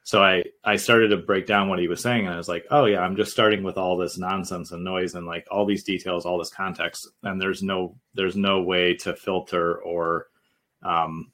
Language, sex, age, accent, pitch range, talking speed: English, male, 30-49, American, 90-105 Hz, 235 wpm